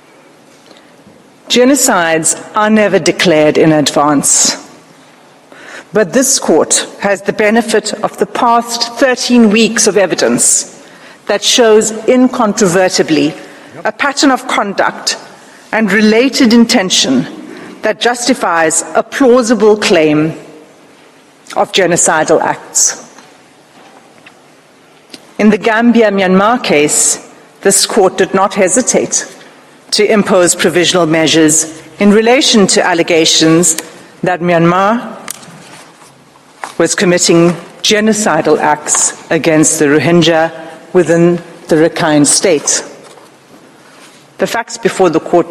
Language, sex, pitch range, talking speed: English, female, 165-220 Hz, 95 wpm